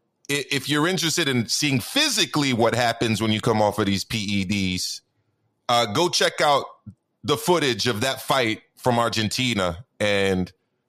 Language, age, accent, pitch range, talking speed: English, 30-49, American, 115-160 Hz, 150 wpm